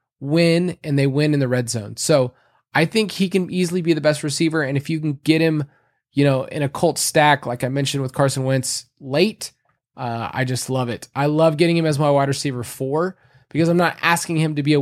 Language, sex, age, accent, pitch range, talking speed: English, male, 20-39, American, 135-170 Hz, 240 wpm